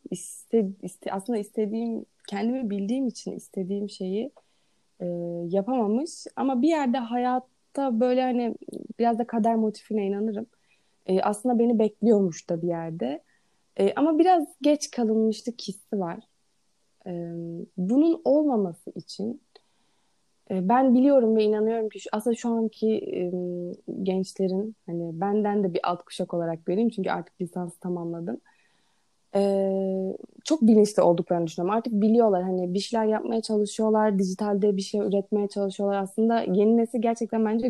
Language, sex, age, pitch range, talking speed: Turkish, female, 30-49, 185-230 Hz, 135 wpm